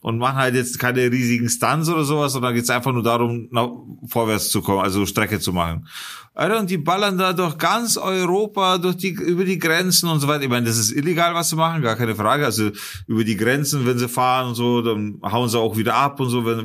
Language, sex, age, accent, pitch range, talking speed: German, male, 30-49, German, 120-160 Hz, 240 wpm